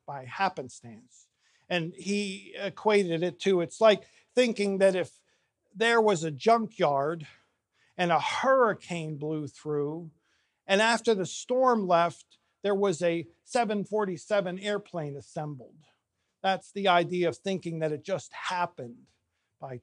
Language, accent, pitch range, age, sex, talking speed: English, American, 150-200 Hz, 50-69, male, 125 wpm